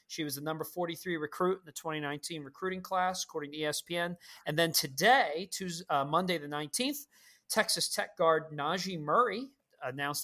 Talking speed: 160 wpm